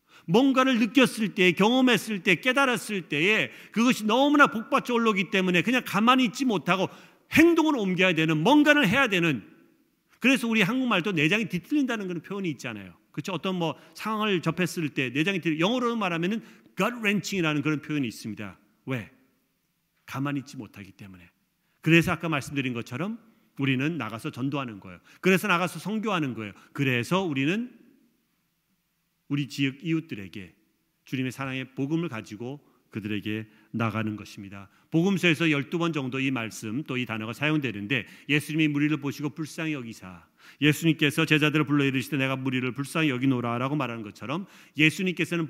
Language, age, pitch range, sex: Korean, 40-59, 135-190 Hz, male